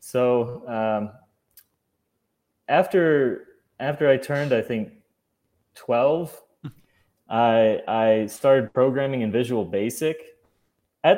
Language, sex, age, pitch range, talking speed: English, male, 20-39, 110-135 Hz, 90 wpm